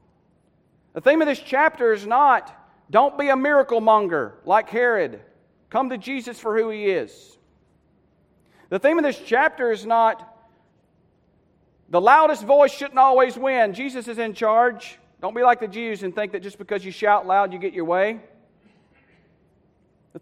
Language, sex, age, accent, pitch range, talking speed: English, male, 40-59, American, 205-285 Hz, 165 wpm